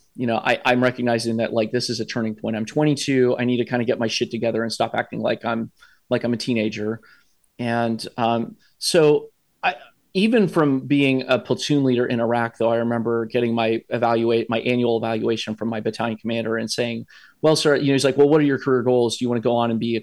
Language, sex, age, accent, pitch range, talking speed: English, male, 30-49, American, 115-130 Hz, 240 wpm